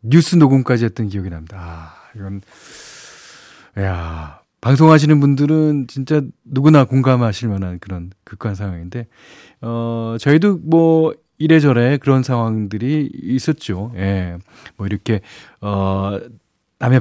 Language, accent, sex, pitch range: Korean, native, male, 105-150 Hz